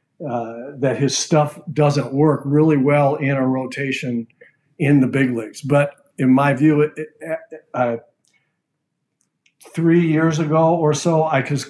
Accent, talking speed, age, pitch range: American, 140 wpm, 50-69, 125-145 Hz